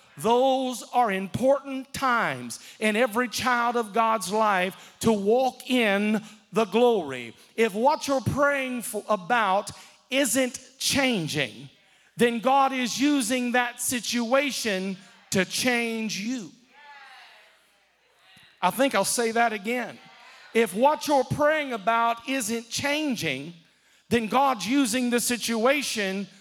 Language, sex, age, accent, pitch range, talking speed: English, male, 40-59, American, 225-265 Hz, 110 wpm